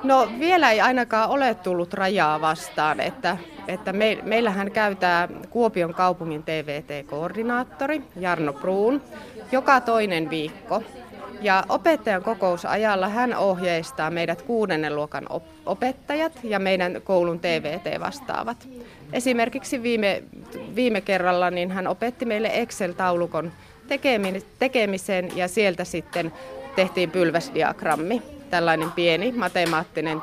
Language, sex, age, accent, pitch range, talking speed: Finnish, female, 30-49, native, 175-230 Hz, 100 wpm